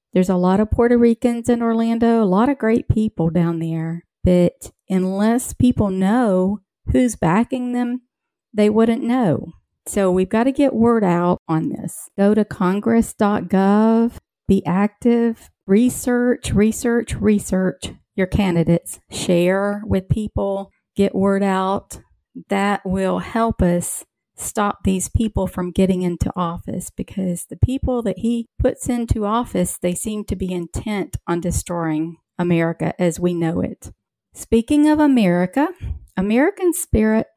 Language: English